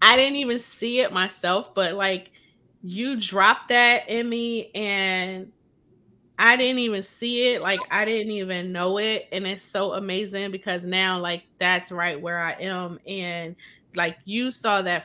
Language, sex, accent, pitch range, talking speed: English, female, American, 170-195 Hz, 170 wpm